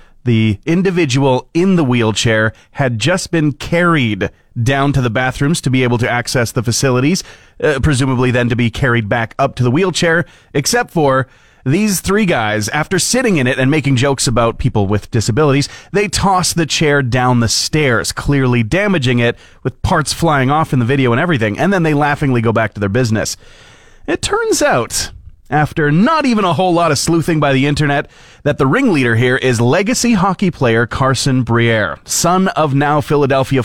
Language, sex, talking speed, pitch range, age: English, male, 185 wpm, 120-155 Hz, 30-49